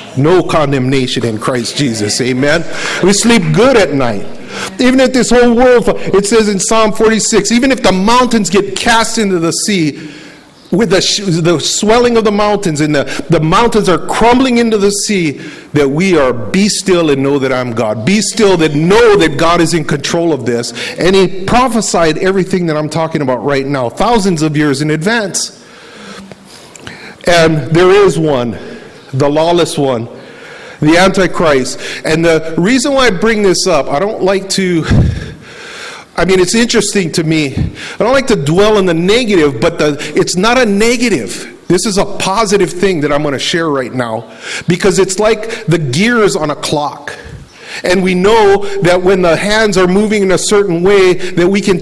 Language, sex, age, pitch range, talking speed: English, male, 50-69, 155-210 Hz, 185 wpm